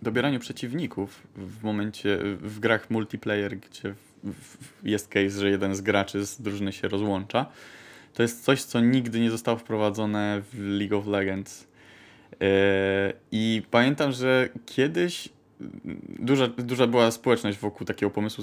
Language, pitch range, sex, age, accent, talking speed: Polish, 105-120 Hz, male, 20-39, native, 135 wpm